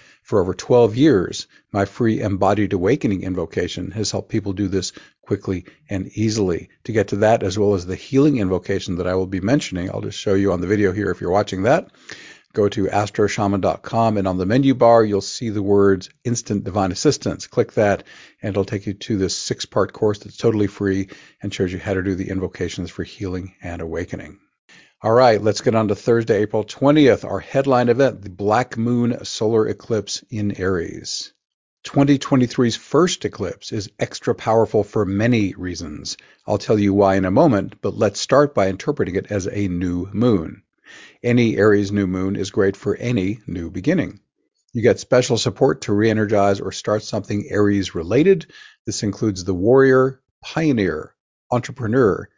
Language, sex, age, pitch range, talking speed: English, male, 50-69, 95-115 Hz, 180 wpm